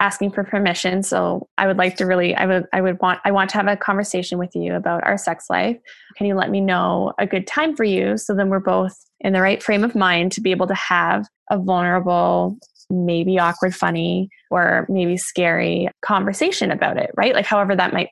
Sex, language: female, English